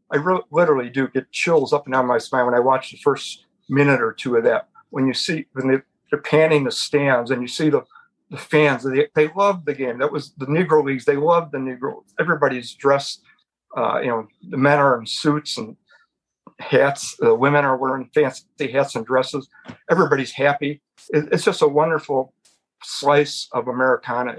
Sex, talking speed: male, 190 wpm